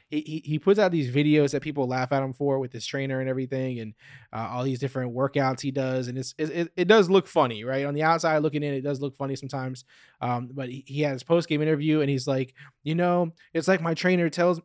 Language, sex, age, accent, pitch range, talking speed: English, male, 20-39, American, 135-165 Hz, 255 wpm